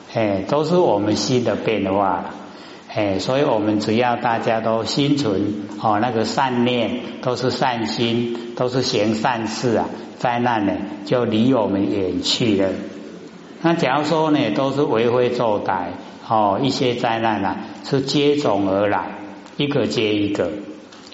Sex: male